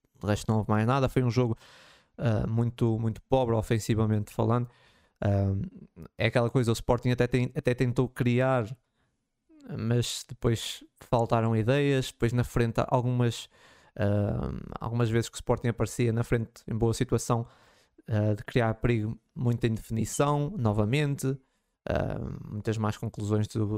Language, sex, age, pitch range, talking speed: Portuguese, male, 20-39, 110-130 Hz, 150 wpm